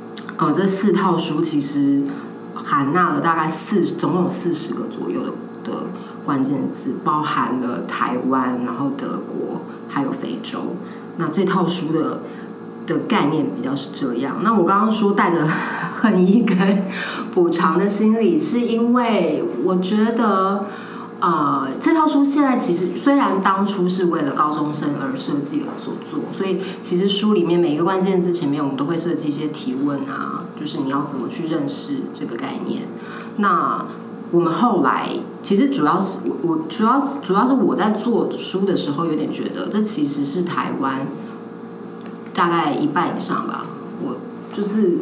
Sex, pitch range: female, 160-225 Hz